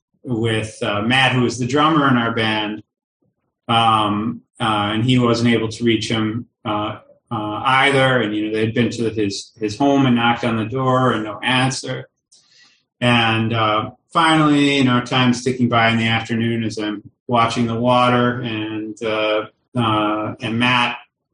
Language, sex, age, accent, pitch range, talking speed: English, male, 30-49, American, 110-130 Hz, 170 wpm